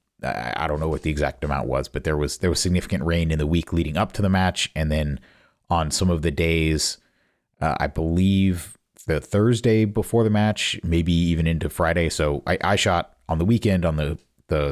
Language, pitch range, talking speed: English, 75-95 Hz, 210 wpm